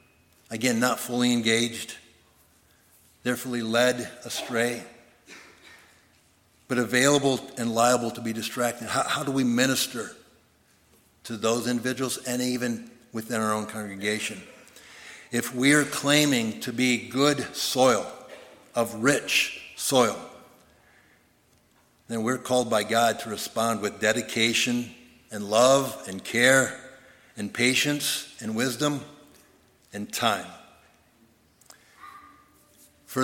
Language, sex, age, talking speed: English, male, 60-79, 110 wpm